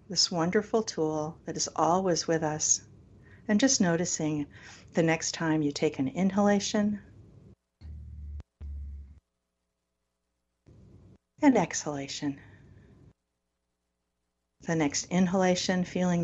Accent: American